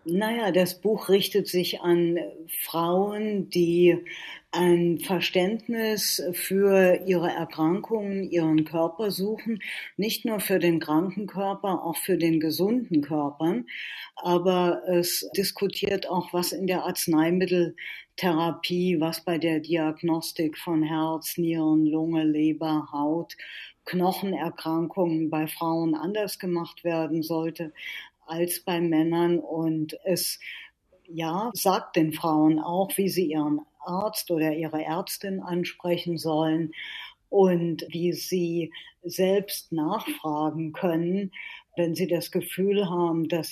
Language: German